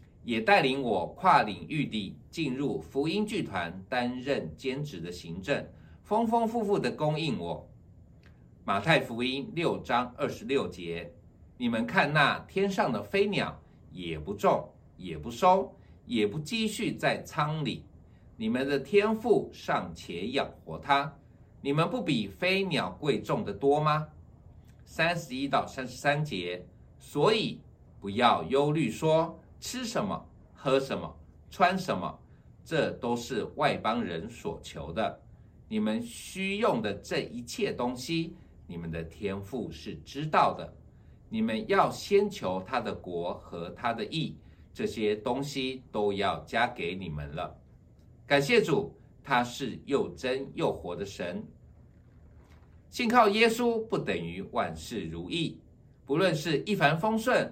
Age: 60-79